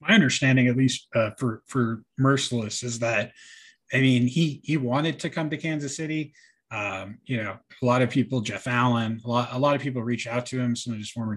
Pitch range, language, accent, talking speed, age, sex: 110-130 Hz, English, American, 225 wpm, 20-39, male